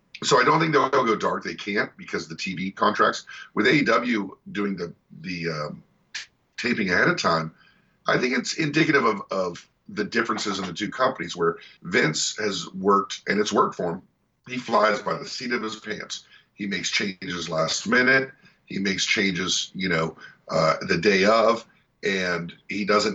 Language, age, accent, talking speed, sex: English, 50-69, American, 180 wpm, male